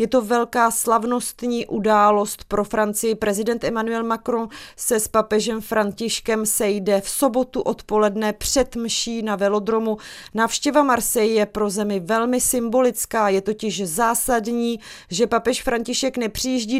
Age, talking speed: 30-49, 130 wpm